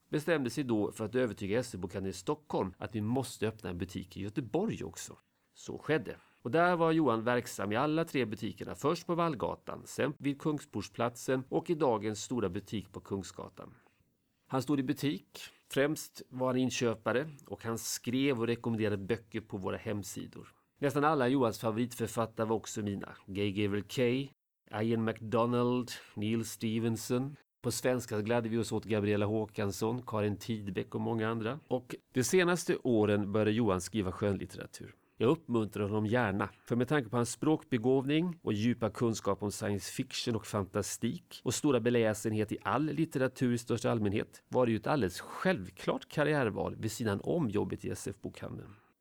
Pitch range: 105-130 Hz